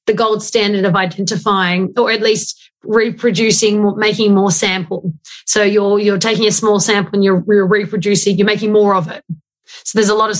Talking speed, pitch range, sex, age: 190 wpm, 190-225 Hz, female, 30-49